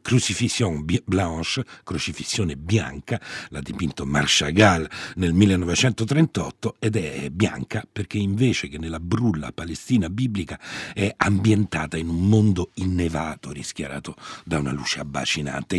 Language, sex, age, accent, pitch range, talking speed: Italian, male, 50-69, native, 80-110 Hz, 115 wpm